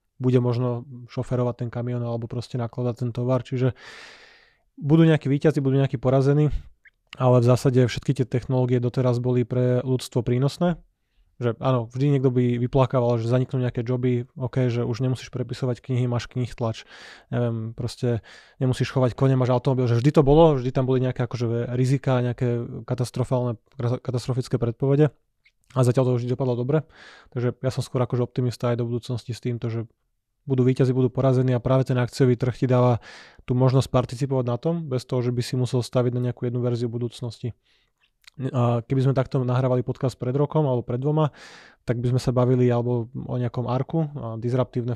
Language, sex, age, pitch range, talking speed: Slovak, male, 20-39, 120-130 Hz, 180 wpm